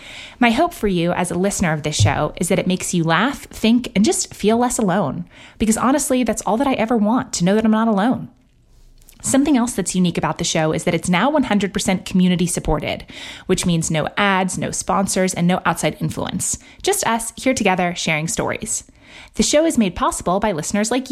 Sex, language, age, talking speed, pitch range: female, English, 20-39, 205 wpm, 165-220 Hz